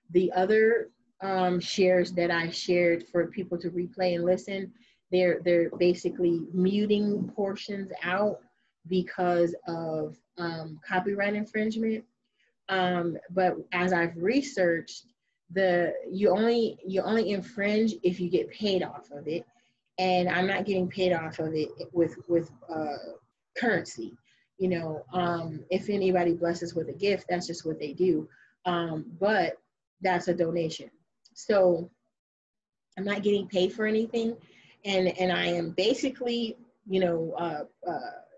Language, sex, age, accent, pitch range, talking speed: English, female, 30-49, American, 170-195 Hz, 140 wpm